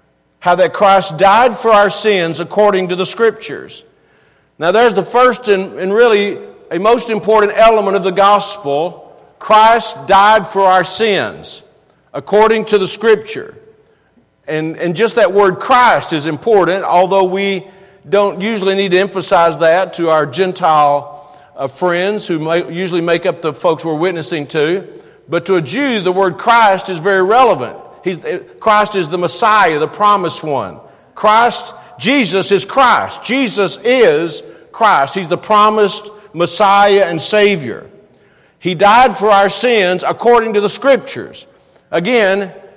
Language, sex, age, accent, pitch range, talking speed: English, male, 50-69, American, 175-225 Hz, 145 wpm